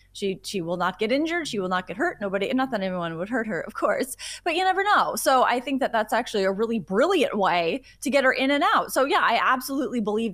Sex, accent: female, American